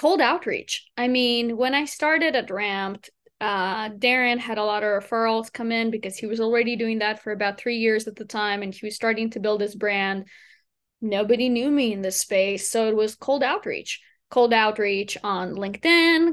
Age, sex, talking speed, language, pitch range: 20-39, female, 200 wpm, English, 210-255 Hz